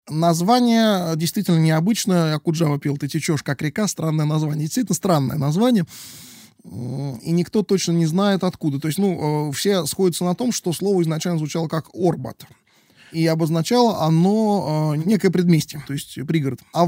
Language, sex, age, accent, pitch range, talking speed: Russian, male, 20-39, native, 145-180 Hz, 150 wpm